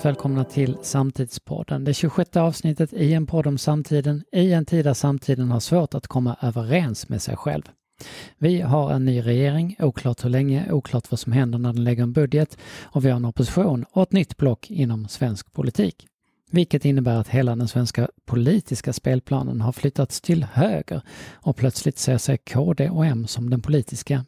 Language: Swedish